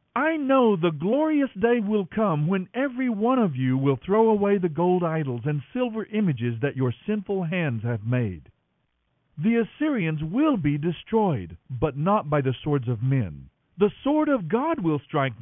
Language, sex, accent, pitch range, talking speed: English, male, American, 135-220 Hz, 175 wpm